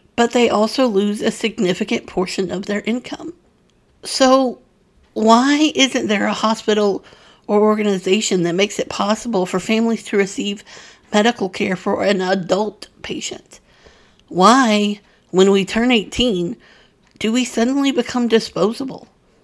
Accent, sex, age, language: American, female, 50-69, English